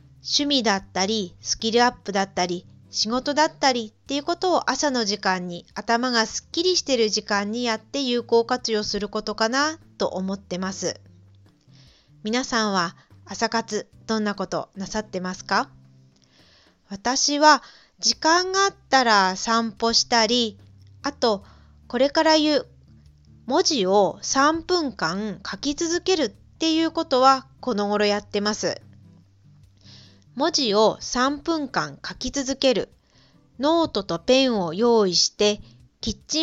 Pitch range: 190-275 Hz